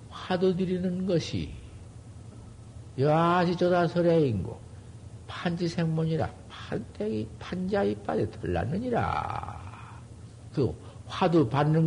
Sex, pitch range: male, 105-140 Hz